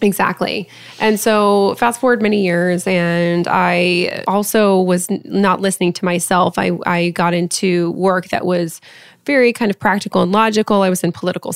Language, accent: English, American